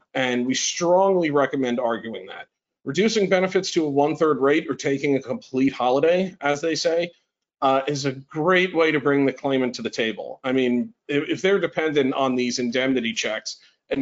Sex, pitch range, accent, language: male, 125-170 Hz, American, English